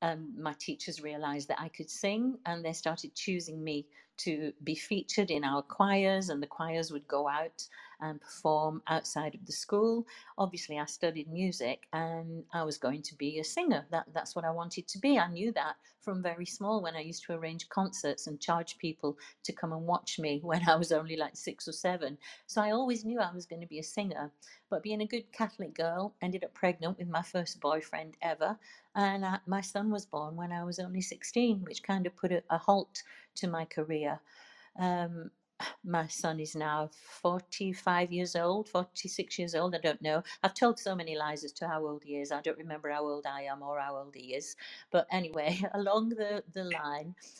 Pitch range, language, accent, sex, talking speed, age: 155-195 Hz, English, British, female, 205 wpm, 50-69